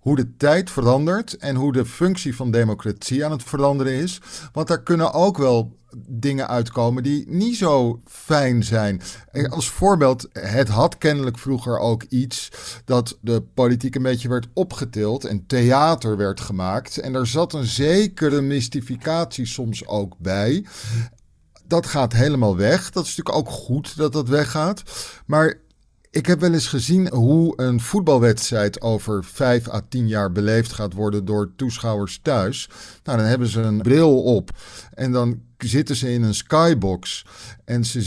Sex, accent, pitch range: male, Dutch, 115-160 Hz